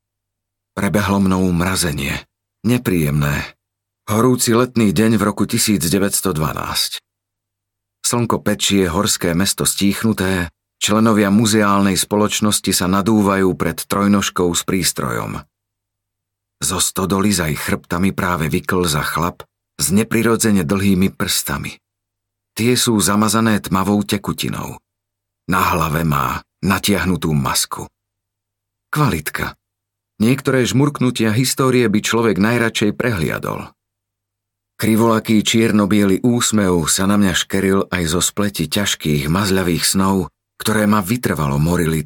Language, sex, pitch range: Slovak, male, 95-110 Hz